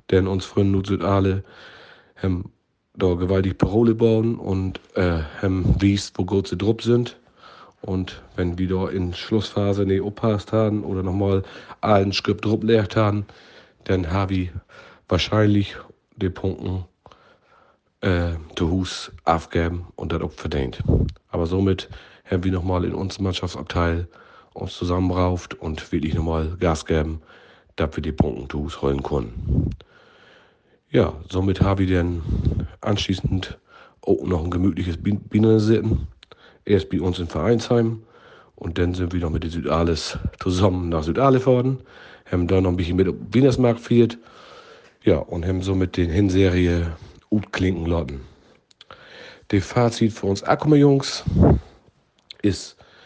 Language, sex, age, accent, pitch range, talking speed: German, male, 40-59, German, 90-105 Hz, 130 wpm